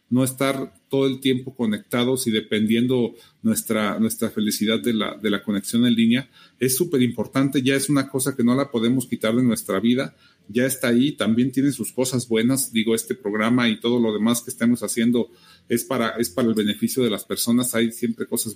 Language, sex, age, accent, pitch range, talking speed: Spanish, male, 40-59, Mexican, 115-140 Hz, 195 wpm